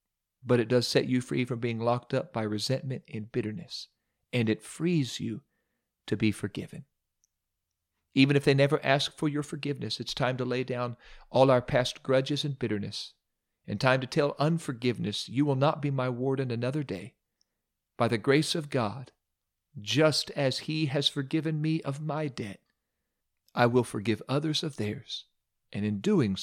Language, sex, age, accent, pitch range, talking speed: English, male, 40-59, American, 110-145 Hz, 175 wpm